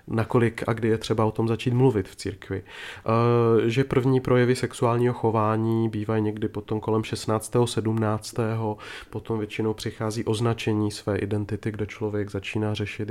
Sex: male